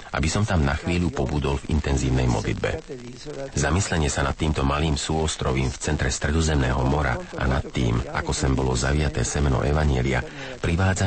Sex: male